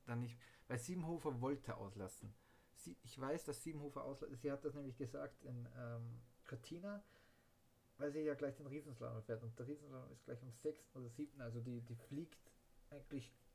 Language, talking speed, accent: German, 180 wpm, German